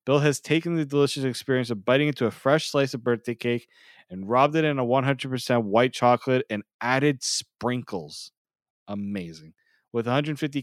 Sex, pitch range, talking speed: male, 115-145 Hz, 165 wpm